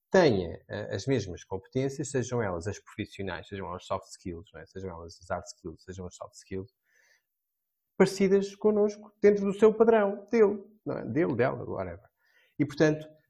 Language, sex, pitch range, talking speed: Portuguese, male, 110-160 Hz, 170 wpm